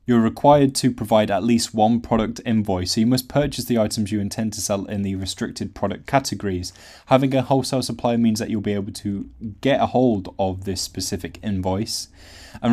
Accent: British